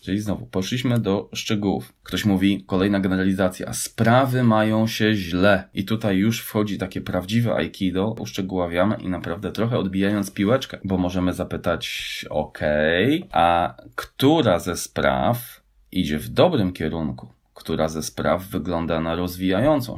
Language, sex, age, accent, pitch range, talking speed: Polish, male, 20-39, native, 90-115 Hz, 135 wpm